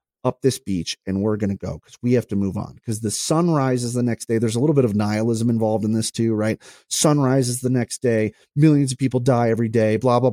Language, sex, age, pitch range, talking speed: English, male, 30-49, 105-130 Hz, 260 wpm